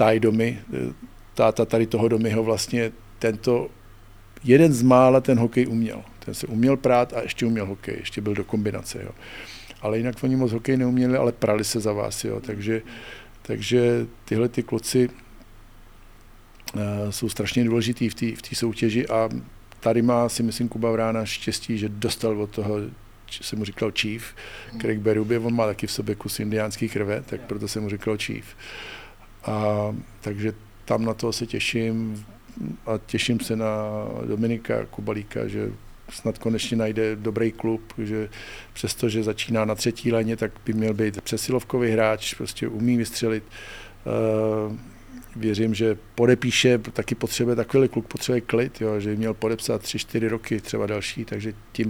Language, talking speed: Czech, 155 wpm